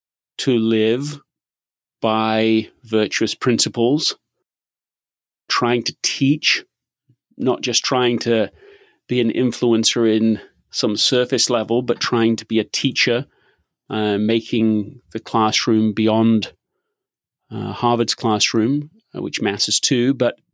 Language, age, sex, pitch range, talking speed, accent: English, 30-49, male, 110-135 Hz, 110 wpm, British